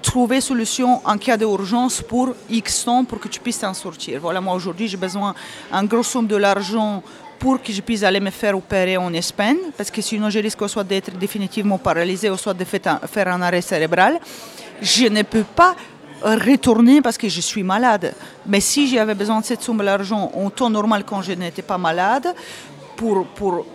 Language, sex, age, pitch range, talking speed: French, female, 30-49, 195-235 Hz, 200 wpm